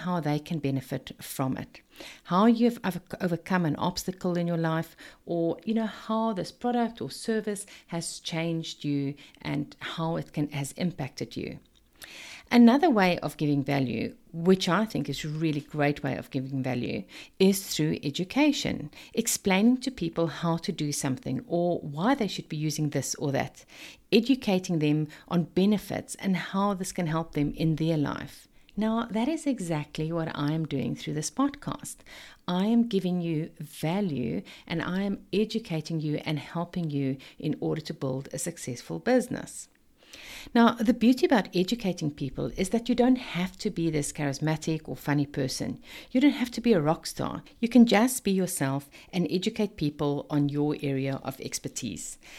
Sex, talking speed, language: female, 170 wpm, English